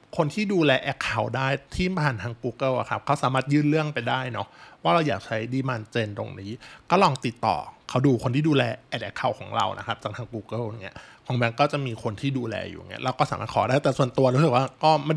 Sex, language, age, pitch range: male, Thai, 20-39, 120-150 Hz